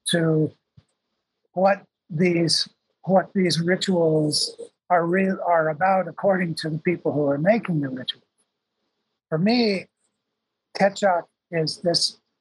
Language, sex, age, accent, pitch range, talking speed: English, male, 60-79, American, 160-195 Hz, 115 wpm